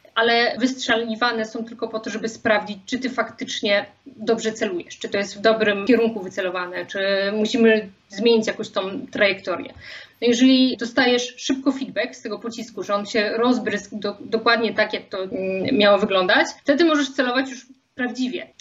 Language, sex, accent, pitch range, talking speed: Polish, female, native, 210-250 Hz, 155 wpm